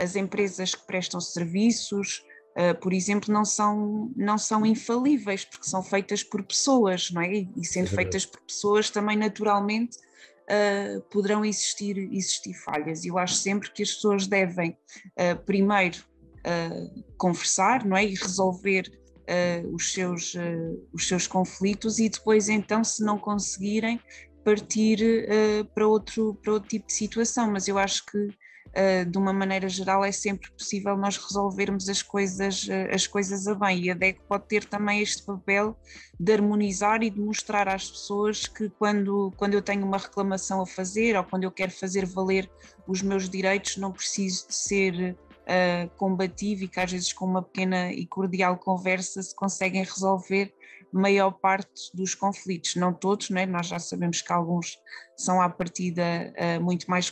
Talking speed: 165 wpm